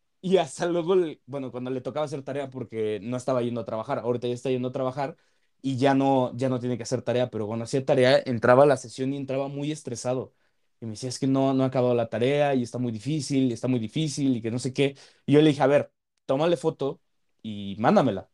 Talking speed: 245 wpm